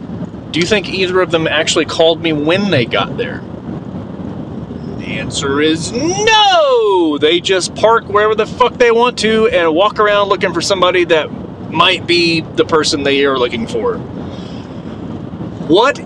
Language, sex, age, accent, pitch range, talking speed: English, male, 30-49, American, 160-225 Hz, 155 wpm